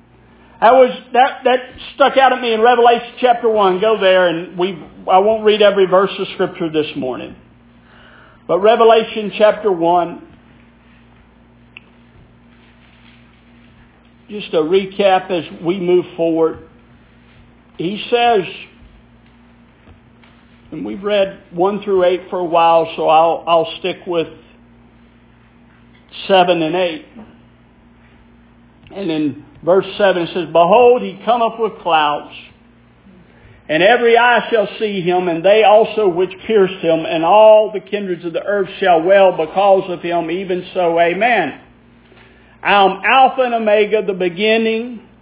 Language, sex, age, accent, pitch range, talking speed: English, male, 50-69, American, 170-225 Hz, 130 wpm